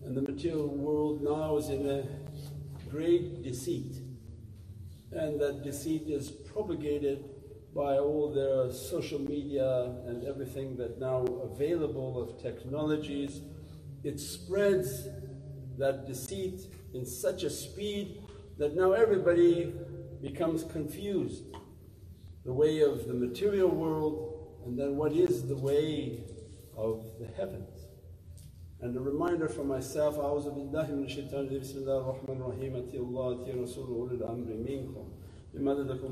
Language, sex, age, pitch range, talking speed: English, male, 60-79, 115-145 Hz, 125 wpm